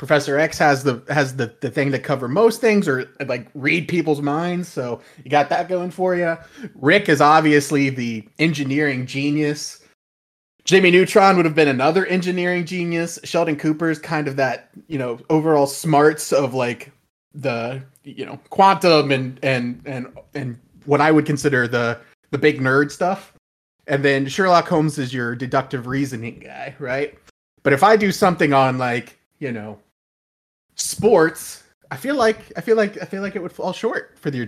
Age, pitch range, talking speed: 20-39, 135-175 Hz, 180 wpm